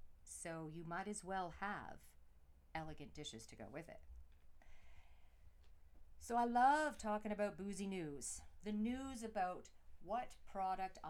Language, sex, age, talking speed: English, female, 40-59, 130 wpm